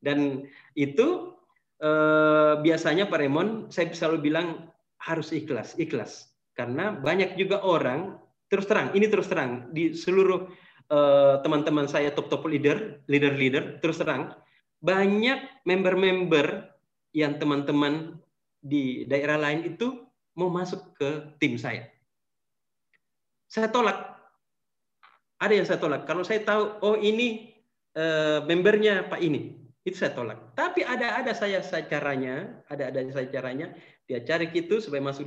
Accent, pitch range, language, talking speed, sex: native, 145-195 Hz, Indonesian, 130 wpm, male